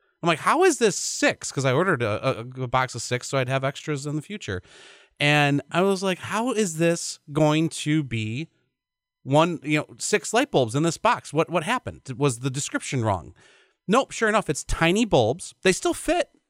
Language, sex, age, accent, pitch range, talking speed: English, male, 30-49, American, 115-165 Hz, 205 wpm